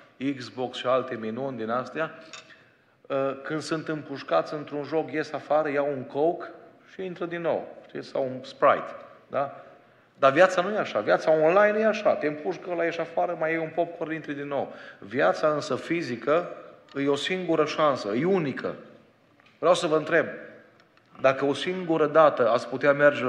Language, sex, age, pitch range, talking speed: Romanian, male, 30-49, 140-170 Hz, 165 wpm